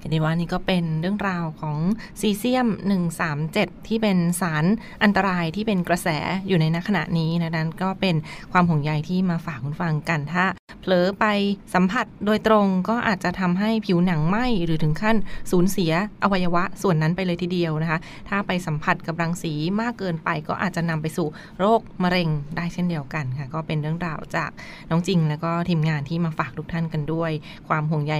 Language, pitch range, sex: Thai, 165-195 Hz, female